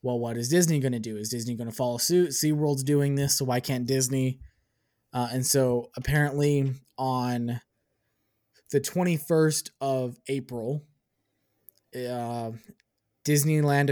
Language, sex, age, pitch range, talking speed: English, male, 20-39, 120-145 Hz, 135 wpm